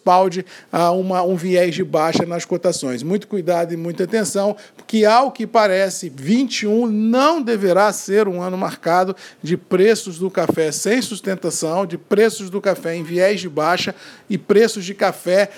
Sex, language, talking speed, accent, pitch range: male, Portuguese, 160 wpm, Brazilian, 180-215 Hz